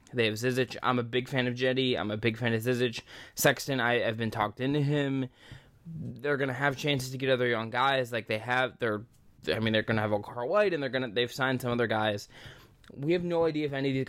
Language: English